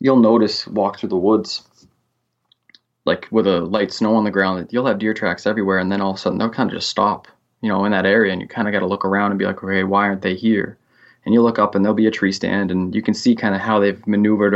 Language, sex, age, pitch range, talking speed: English, male, 20-39, 90-105 Hz, 290 wpm